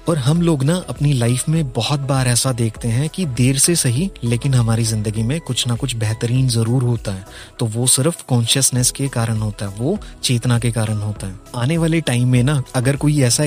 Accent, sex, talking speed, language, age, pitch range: native, male, 175 wpm, Hindi, 30-49, 115-140 Hz